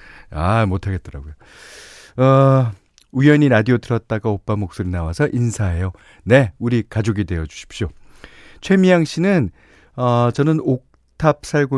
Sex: male